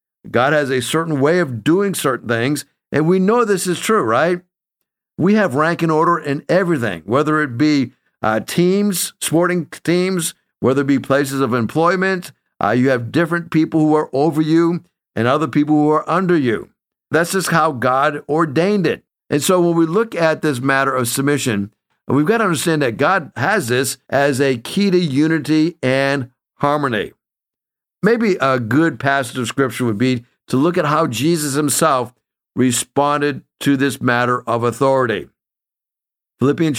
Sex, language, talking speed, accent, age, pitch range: male, English, 170 wpm, American, 50-69, 130-165 Hz